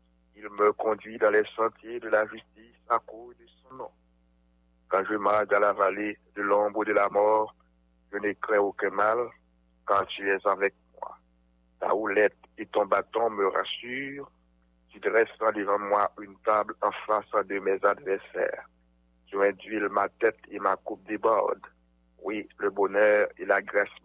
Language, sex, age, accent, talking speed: English, male, 60-79, French, 165 wpm